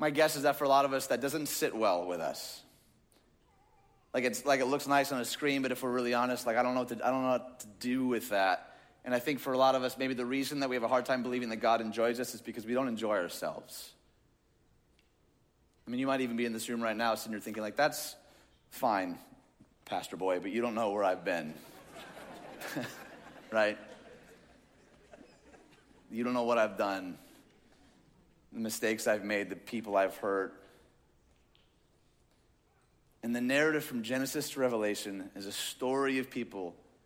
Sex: male